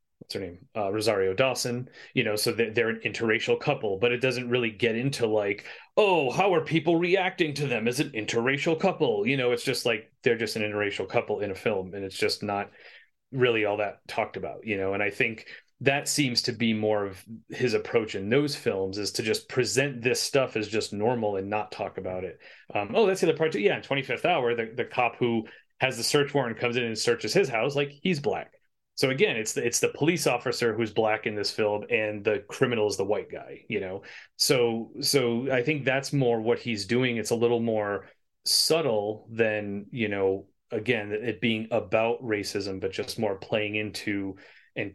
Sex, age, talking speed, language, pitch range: male, 30-49, 215 wpm, English, 105-130 Hz